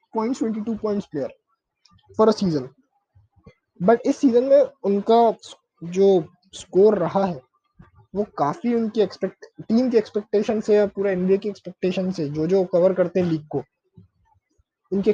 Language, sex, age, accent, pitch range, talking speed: Hindi, male, 20-39, native, 185-230 Hz, 145 wpm